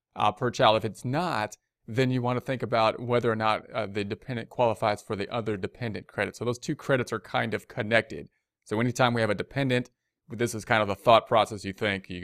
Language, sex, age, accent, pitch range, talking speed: English, male, 30-49, American, 105-130 Hz, 235 wpm